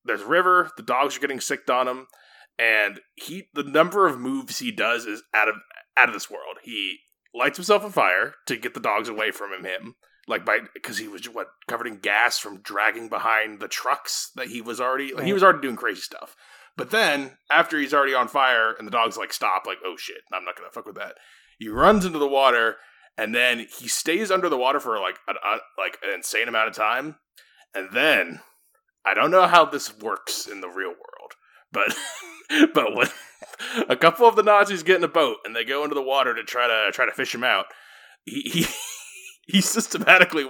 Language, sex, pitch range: English, male, 135-215 Hz